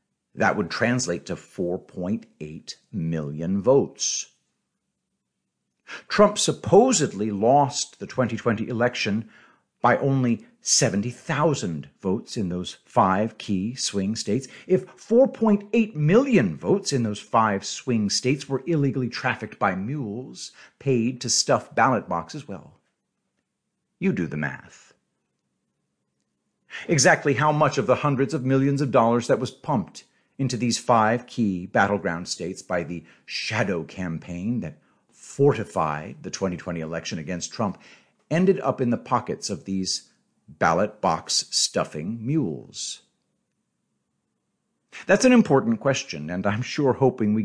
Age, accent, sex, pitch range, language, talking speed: 50-69, American, male, 100-140 Hz, English, 120 wpm